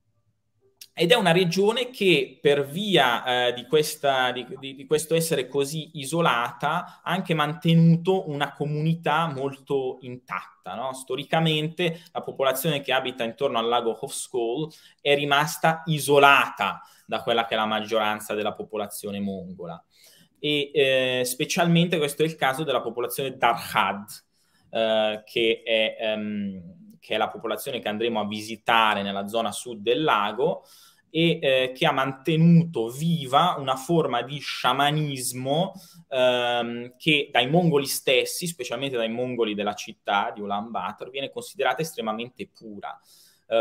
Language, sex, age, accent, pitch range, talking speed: Italian, male, 20-39, native, 120-160 Hz, 135 wpm